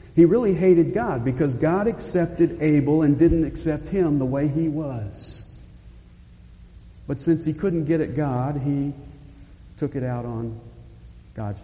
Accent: American